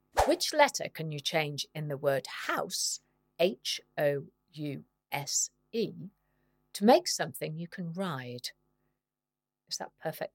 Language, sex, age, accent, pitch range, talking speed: English, female, 50-69, British, 145-235 Hz, 110 wpm